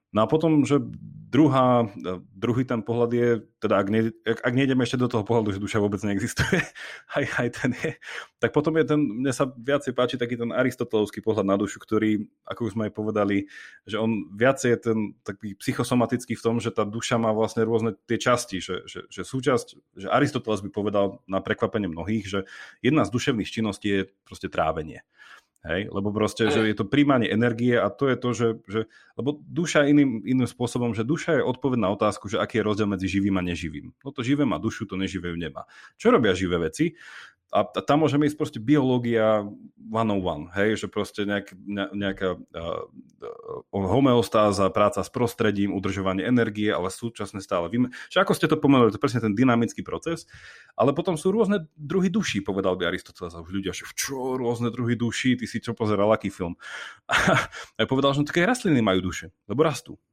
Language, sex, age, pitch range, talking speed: Slovak, male, 30-49, 100-130 Hz, 195 wpm